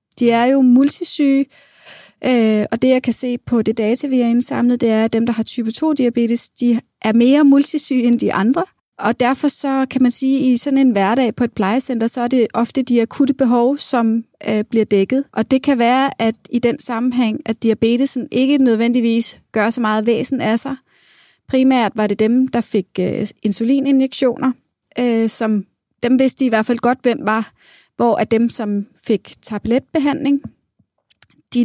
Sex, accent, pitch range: female, native, 225-265 Hz